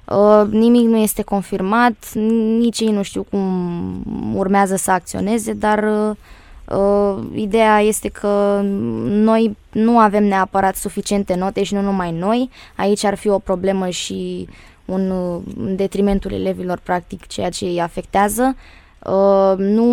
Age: 20-39